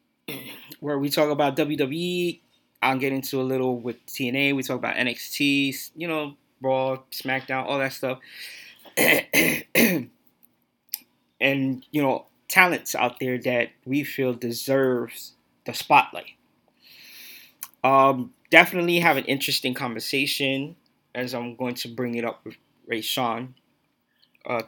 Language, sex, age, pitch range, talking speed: English, male, 20-39, 125-160 Hz, 125 wpm